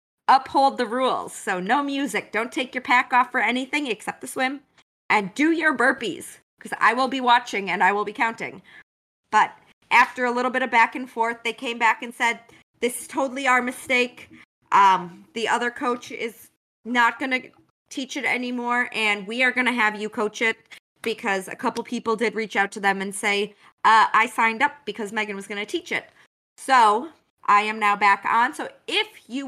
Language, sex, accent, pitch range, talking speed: English, female, American, 210-255 Hz, 205 wpm